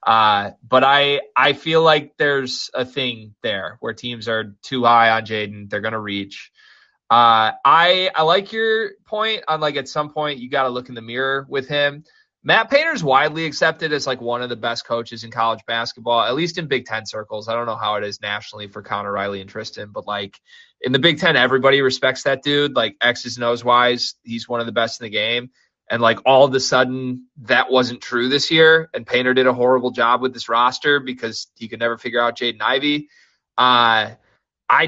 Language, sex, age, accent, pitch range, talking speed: English, male, 20-39, American, 120-155 Hz, 215 wpm